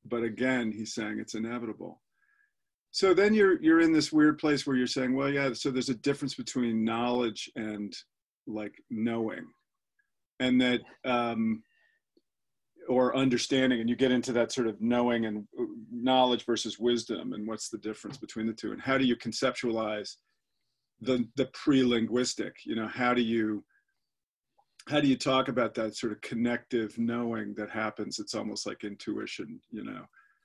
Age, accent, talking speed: 40-59, American, 165 wpm